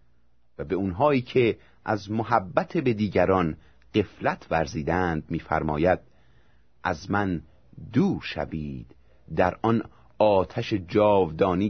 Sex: male